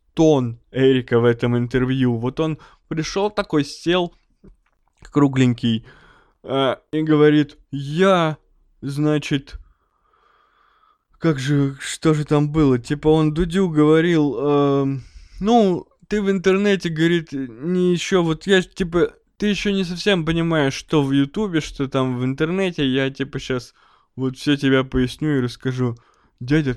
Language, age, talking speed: Russian, 20-39, 130 wpm